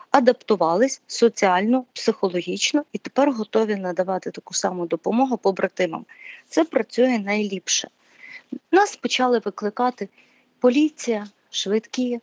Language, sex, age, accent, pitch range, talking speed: Ukrainian, female, 40-59, native, 210-260 Hz, 95 wpm